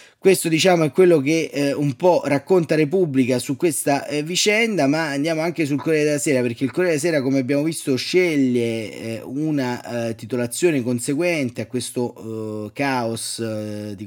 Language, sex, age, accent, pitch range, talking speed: Italian, male, 30-49, native, 125-170 Hz, 175 wpm